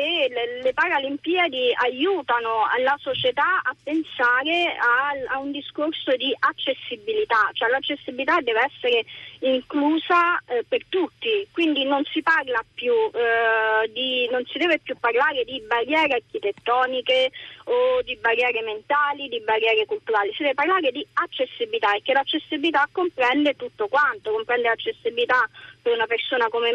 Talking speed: 135 wpm